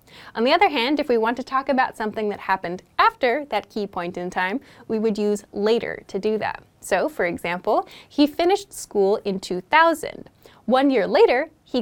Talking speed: 195 wpm